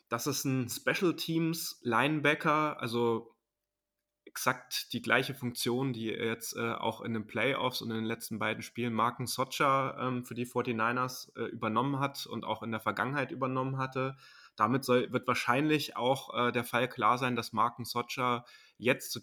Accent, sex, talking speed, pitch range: German, male, 160 wpm, 115-140 Hz